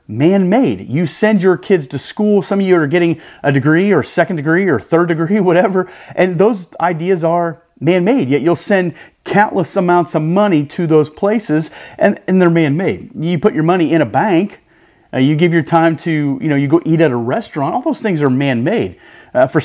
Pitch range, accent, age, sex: 155-200 Hz, American, 30-49, male